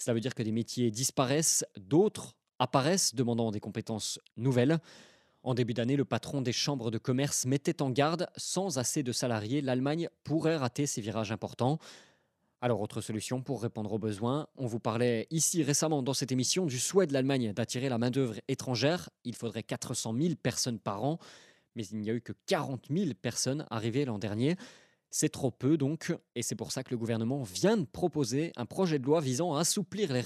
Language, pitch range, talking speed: French, 115-150 Hz, 200 wpm